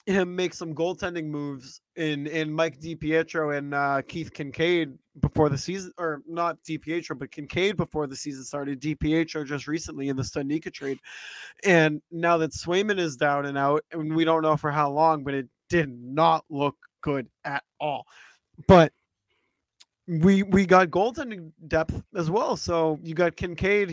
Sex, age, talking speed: male, 20-39, 170 wpm